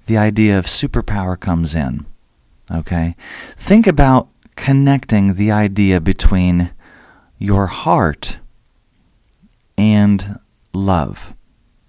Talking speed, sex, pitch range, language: 85 wpm, male, 95-125 Hz, English